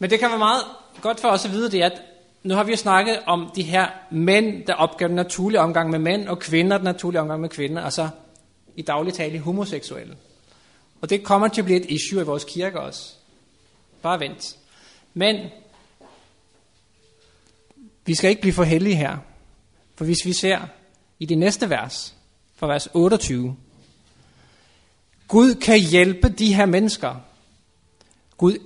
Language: Danish